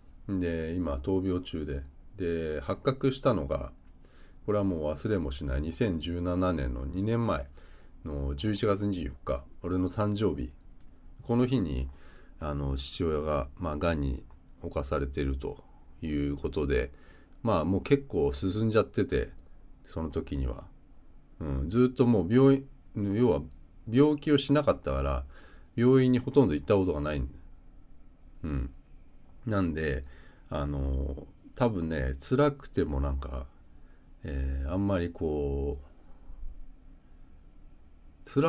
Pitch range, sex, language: 70-95 Hz, male, Japanese